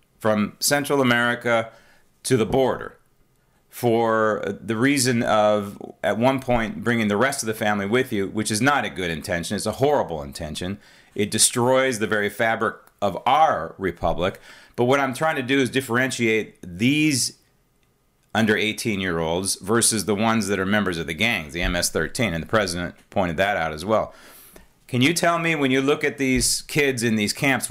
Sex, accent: male, American